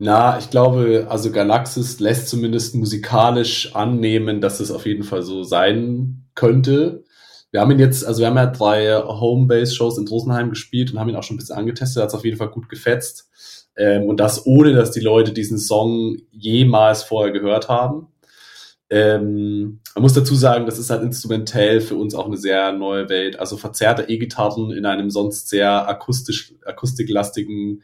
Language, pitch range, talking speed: German, 100-120 Hz, 180 wpm